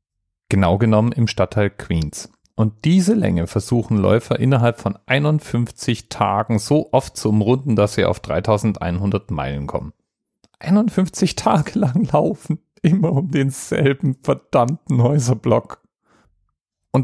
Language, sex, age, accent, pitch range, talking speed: German, male, 40-59, German, 95-125 Hz, 120 wpm